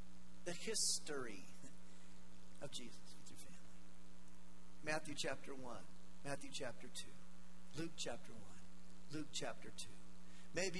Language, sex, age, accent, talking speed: English, male, 50-69, American, 110 wpm